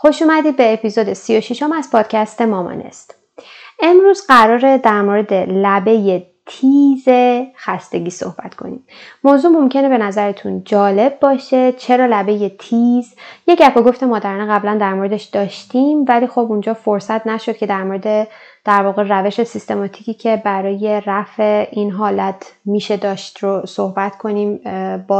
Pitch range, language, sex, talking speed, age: 195-245 Hz, Persian, female, 135 wpm, 20-39